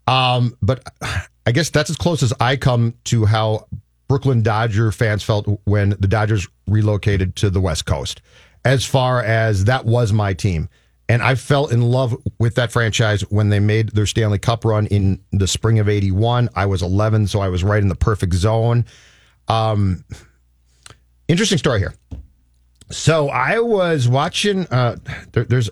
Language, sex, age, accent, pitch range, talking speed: English, male, 40-59, American, 95-120 Hz, 170 wpm